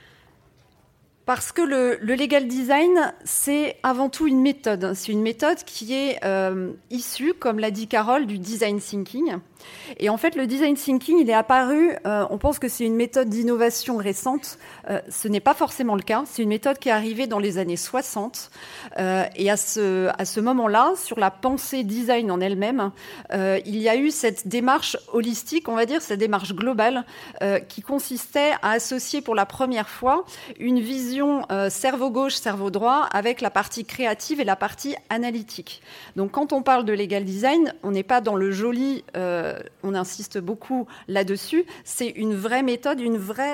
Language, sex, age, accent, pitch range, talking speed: French, female, 30-49, French, 205-260 Hz, 185 wpm